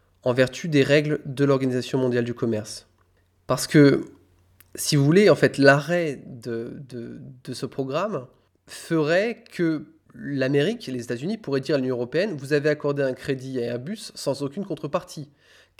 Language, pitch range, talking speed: French, 125-155 Hz, 175 wpm